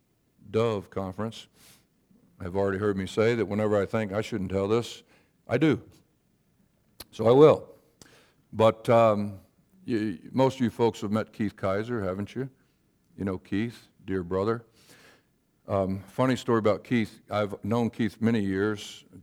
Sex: male